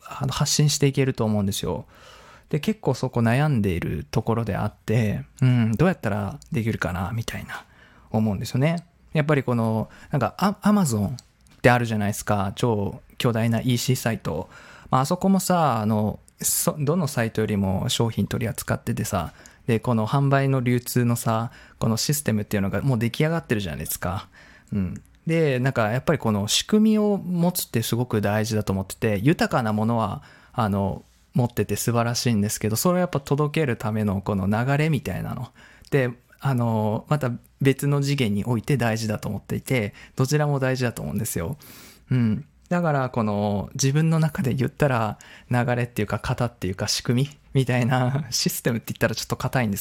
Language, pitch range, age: Japanese, 105-140 Hz, 20-39